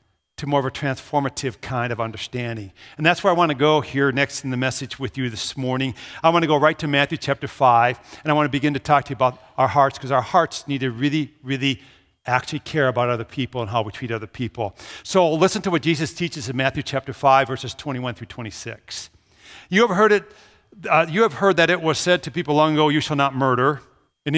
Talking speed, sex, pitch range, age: 240 wpm, male, 130-155 Hz, 50-69